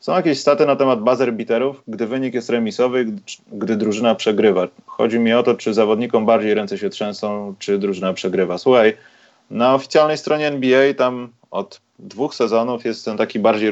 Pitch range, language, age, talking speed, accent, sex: 100-125 Hz, Polish, 30-49, 175 wpm, native, male